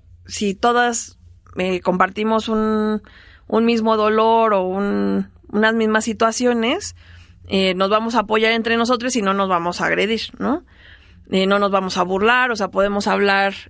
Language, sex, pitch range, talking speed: Spanish, female, 170-220 Hz, 160 wpm